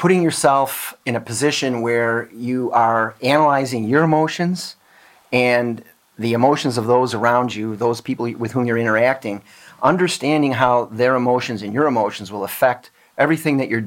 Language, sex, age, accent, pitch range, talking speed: English, male, 40-59, American, 115-140 Hz, 155 wpm